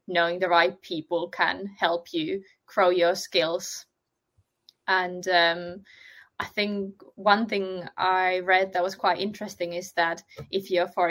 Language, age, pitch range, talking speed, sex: English, 20-39, 175-200 Hz, 145 wpm, female